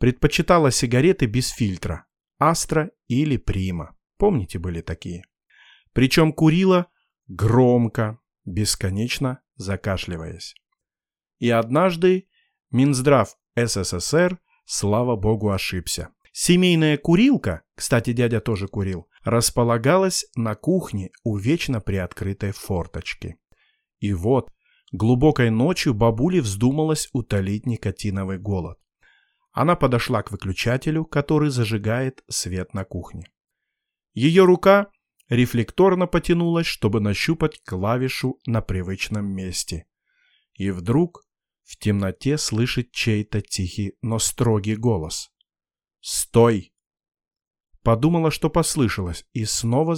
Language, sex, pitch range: Russian, male, 100-145 Hz